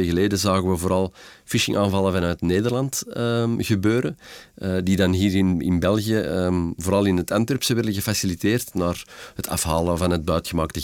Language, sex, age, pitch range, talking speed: Dutch, male, 40-59, 90-105 Hz, 160 wpm